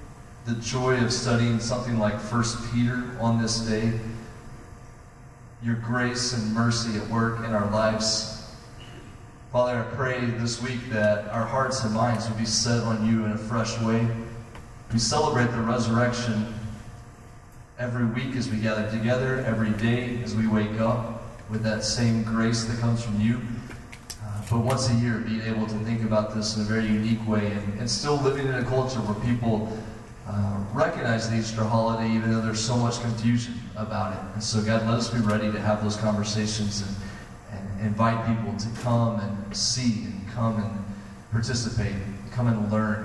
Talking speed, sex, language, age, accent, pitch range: 175 wpm, male, English, 30-49, American, 110-120 Hz